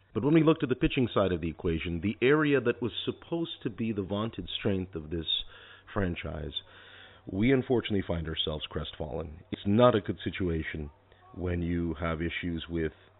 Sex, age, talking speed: male, 40-59, 175 wpm